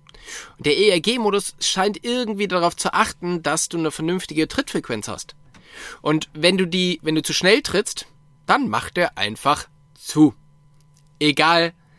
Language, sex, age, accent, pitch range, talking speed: German, male, 20-39, German, 150-190 Hz, 145 wpm